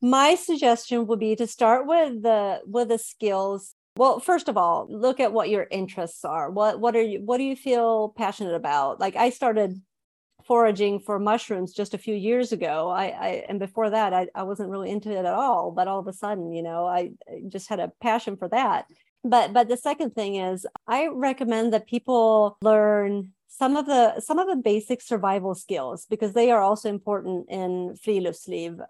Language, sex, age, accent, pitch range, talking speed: English, female, 40-59, American, 200-240 Hz, 200 wpm